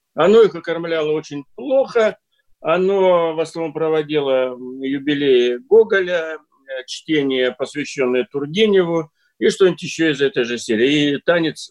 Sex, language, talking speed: male, Russian, 120 wpm